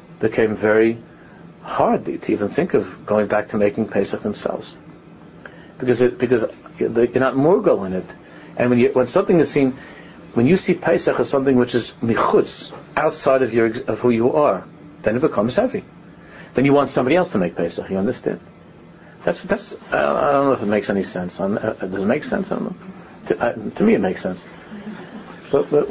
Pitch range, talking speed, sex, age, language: 125-195 Hz, 185 wpm, male, 50-69, English